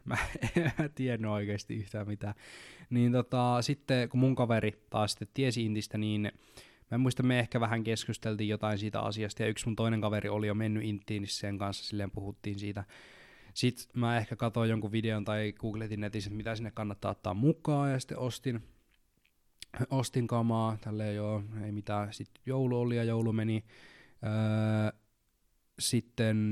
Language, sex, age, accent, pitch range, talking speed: Finnish, male, 20-39, native, 105-125 Hz, 165 wpm